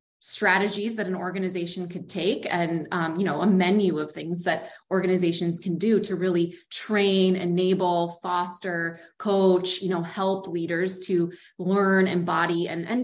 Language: English